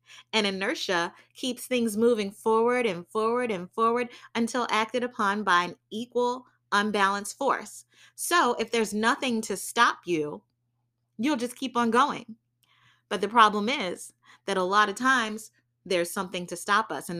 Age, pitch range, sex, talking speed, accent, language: 30-49, 185-265 Hz, female, 155 wpm, American, English